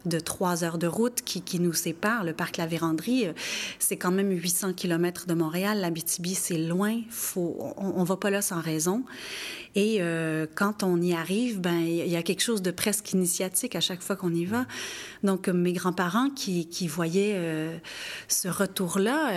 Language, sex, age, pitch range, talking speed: French, female, 30-49, 170-210 Hz, 190 wpm